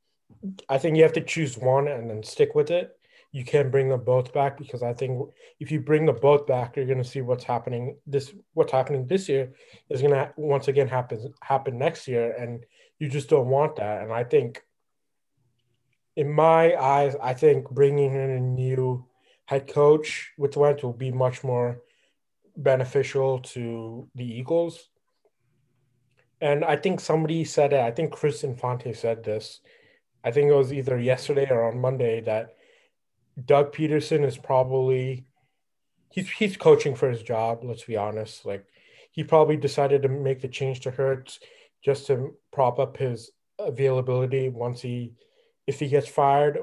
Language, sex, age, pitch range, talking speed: English, male, 20-39, 125-150 Hz, 170 wpm